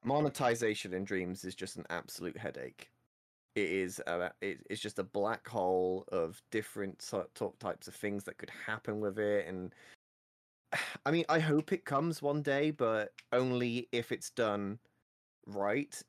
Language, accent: English, British